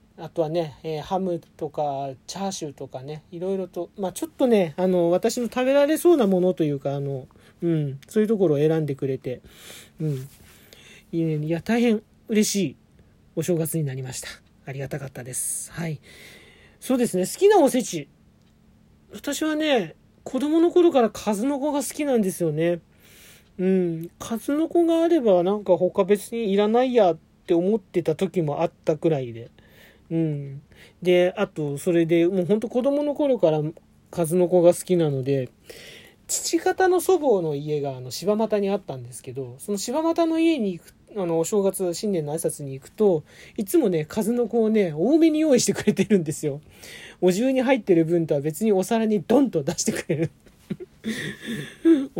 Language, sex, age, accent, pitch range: Japanese, male, 40-59, native, 155-225 Hz